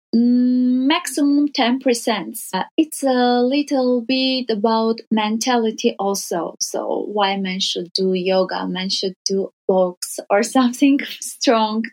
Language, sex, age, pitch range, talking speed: English, female, 20-39, 215-255 Hz, 115 wpm